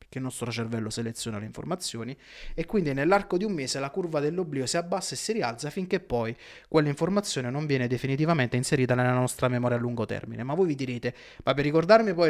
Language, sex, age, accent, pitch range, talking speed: Italian, male, 30-49, native, 125-165 Hz, 205 wpm